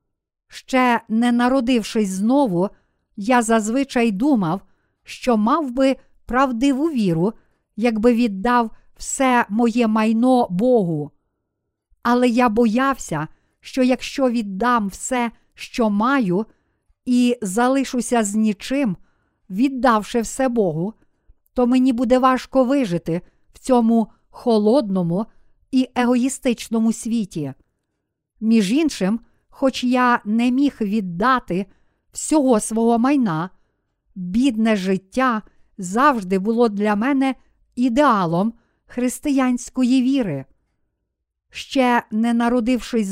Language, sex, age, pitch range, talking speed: Ukrainian, female, 50-69, 210-255 Hz, 95 wpm